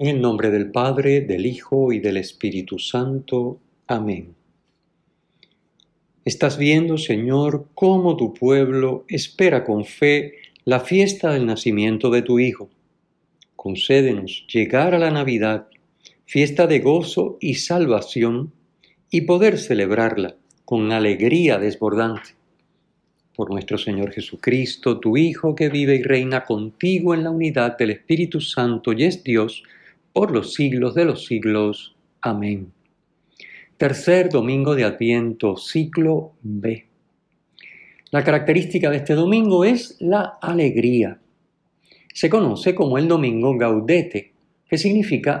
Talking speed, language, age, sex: 125 wpm, Spanish, 50-69, male